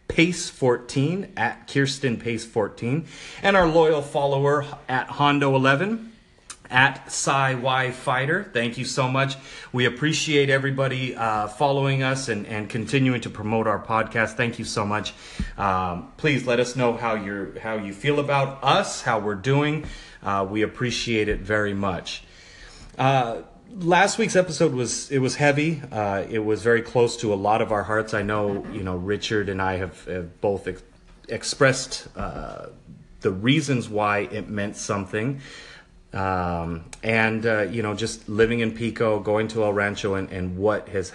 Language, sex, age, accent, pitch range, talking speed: English, male, 30-49, American, 100-135 Hz, 160 wpm